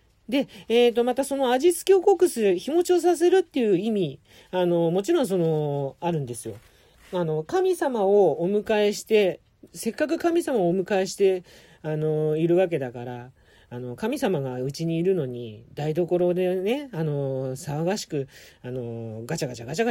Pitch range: 130-220 Hz